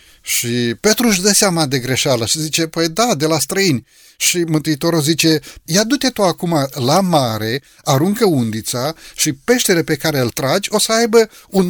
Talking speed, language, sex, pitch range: 180 wpm, Romanian, male, 135-195 Hz